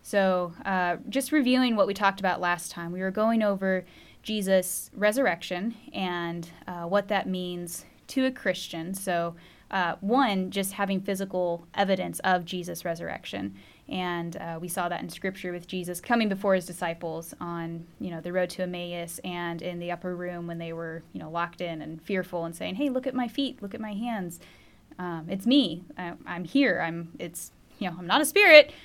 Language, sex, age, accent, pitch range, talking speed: English, female, 10-29, American, 175-205 Hz, 195 wpm